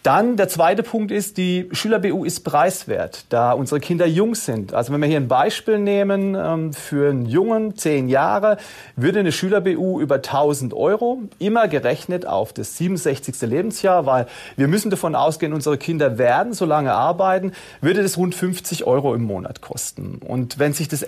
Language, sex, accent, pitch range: German, male, German, 130-185 Hz